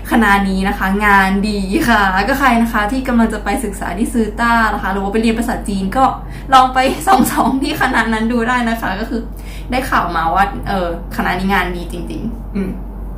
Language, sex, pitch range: Thai, female, 200-255 Hz